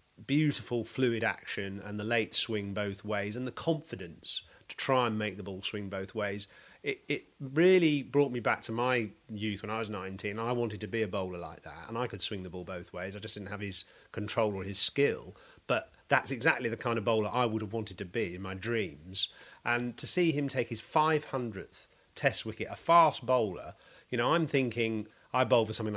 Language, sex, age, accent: English, male, 30-49, British